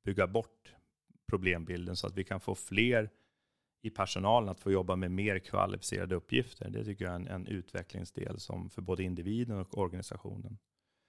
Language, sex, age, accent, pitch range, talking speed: English, male, 30-49, Swedish, 90-100 Hz, 170 wpm